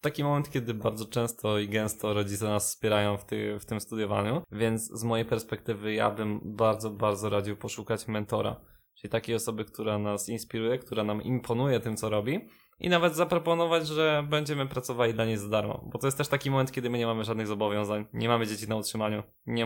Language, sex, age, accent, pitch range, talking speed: Polish, male, 20-39, native, 110-130 Hz, 200 wpm